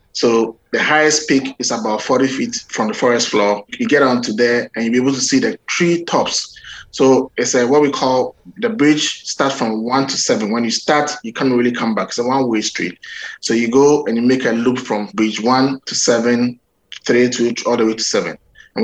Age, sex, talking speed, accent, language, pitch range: 20-39, male, 230 wpm, Nigerian, English, 110-135 Hz